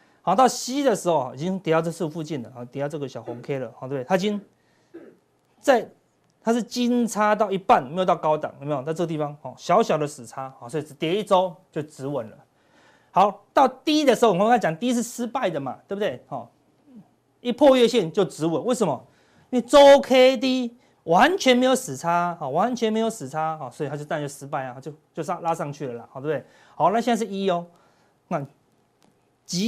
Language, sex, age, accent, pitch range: Chinese, male, 30-49, native, 145-220 Hz